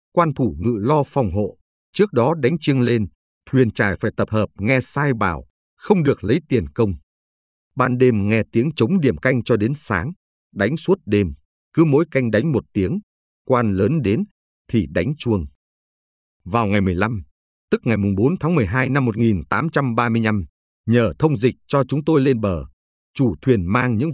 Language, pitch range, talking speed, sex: Vietnamese, 85-135 Hz, 180 wpm, male